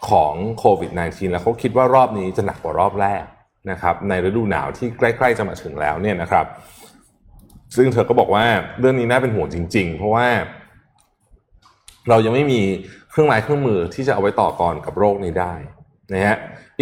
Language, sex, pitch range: Thai, male, 95-130 Hz